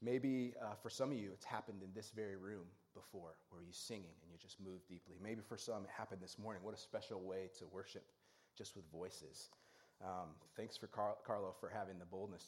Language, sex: English, male